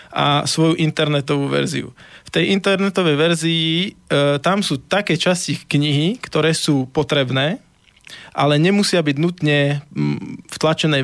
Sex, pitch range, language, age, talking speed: male, 140-165 Hz, Slovak, 20-39, 125 wpm